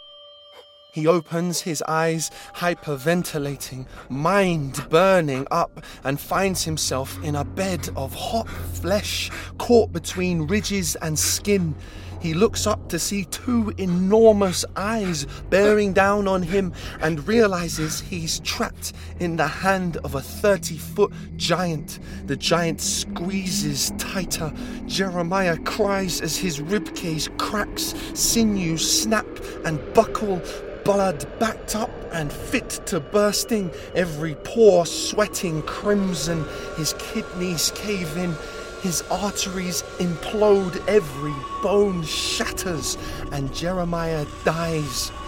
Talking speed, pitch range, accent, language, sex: 110 wpm, 155-200 Hz, British, English, male